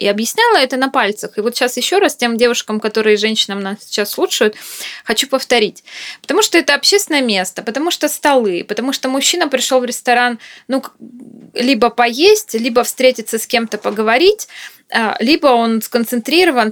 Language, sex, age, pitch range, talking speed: Russian, female, 20-39, 210-265 Hz, 160 wpm